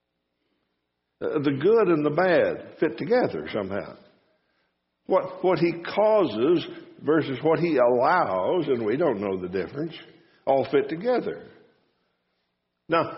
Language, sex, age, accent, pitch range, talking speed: English, male, 60-79, American, 105-170 Hz, 120 wpm